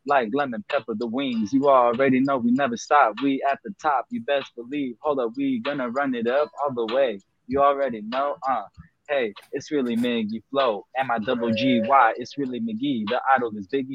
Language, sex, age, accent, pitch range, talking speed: English, male, 20-39, American, 125-170 Hz, 210 wpm